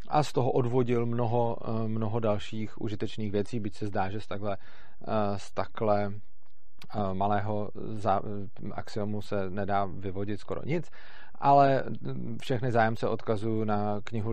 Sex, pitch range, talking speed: male, 105-130 Hz, 120 wpm